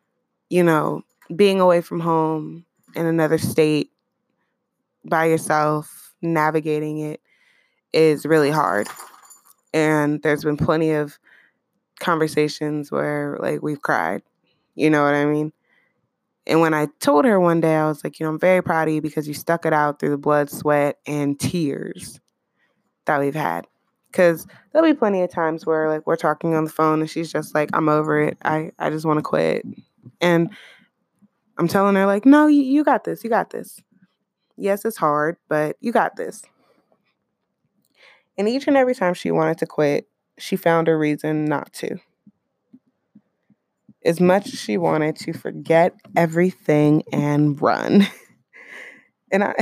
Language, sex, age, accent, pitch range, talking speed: English, female, 20-39, American, 150-200 Hz, 160 wpm